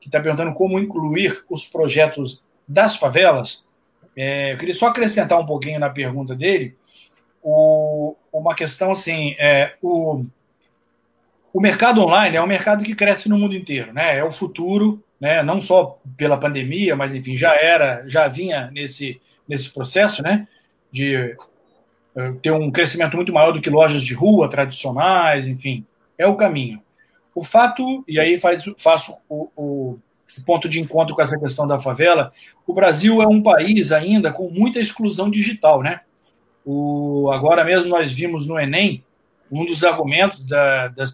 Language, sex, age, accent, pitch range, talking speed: Portuguese, male, 40-59, Brazilian, 140-185 Hz, 160 wpm